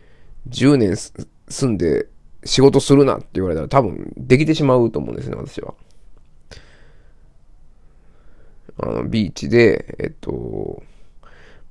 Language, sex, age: Japanese, male, 20-39